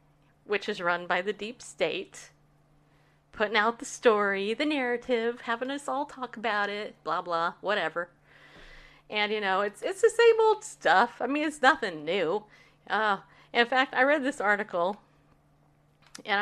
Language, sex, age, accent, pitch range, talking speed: English, female, 40-59, American, 190-260 Hz, 160 wpm